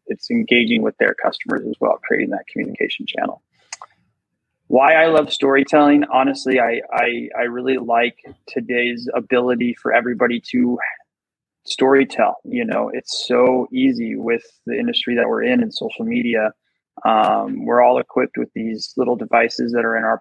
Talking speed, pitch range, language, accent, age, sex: 155 wpm, 115-150 Hz, English, American, 20-39, male